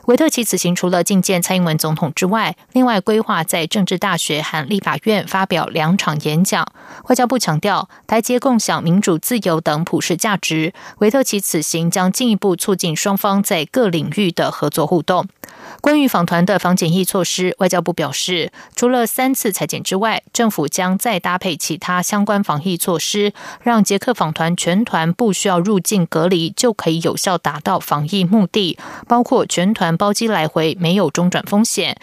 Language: German